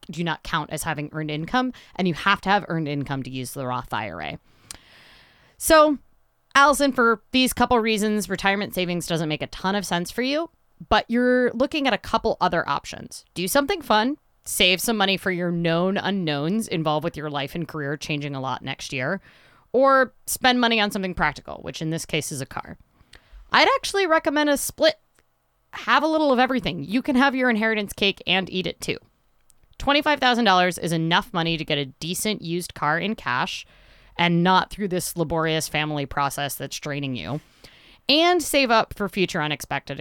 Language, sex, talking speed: English, female, 185 wpm